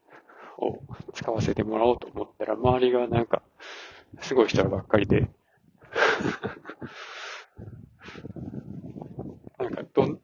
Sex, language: male, Japanese